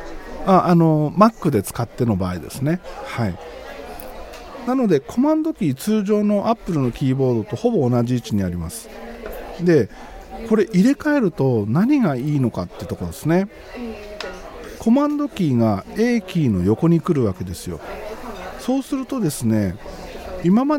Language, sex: Japanese, male